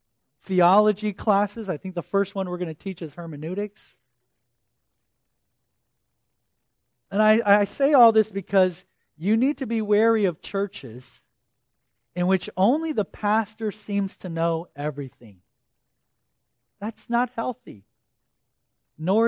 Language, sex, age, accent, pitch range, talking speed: English, male, 40-59, American, 155-245 Hz, 125 wpm